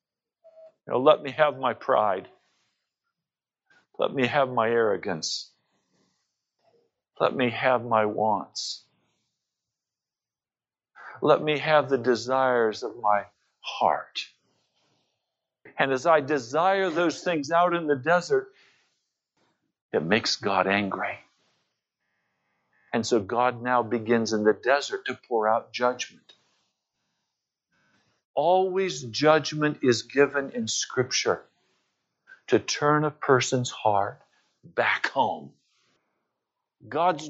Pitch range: 130-215 Hz